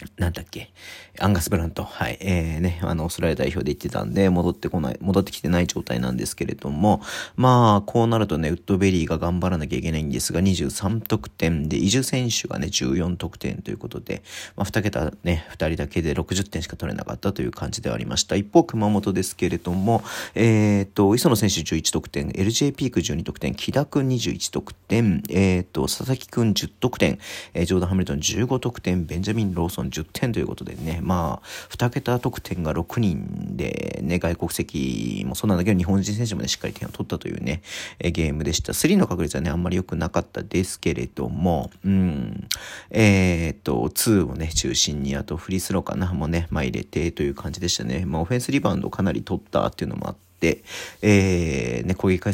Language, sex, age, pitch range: Japanese, male, 40-59, 85-105 Hz